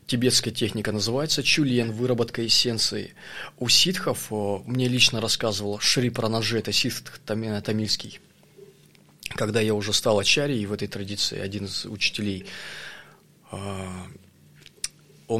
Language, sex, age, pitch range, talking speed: Russian, male, 20-39, 110-140 Hz, 125 wpm